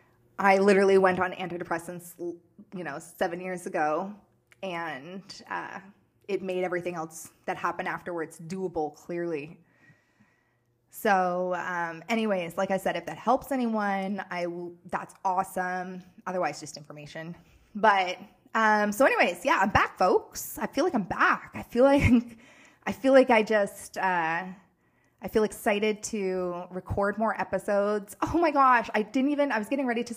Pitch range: 180-220 Hz